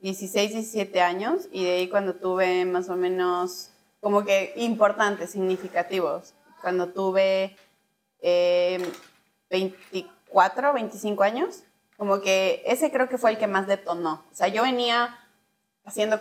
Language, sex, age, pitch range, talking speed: Spanish, female, 20-39, 185-220 Hz, 135 wpm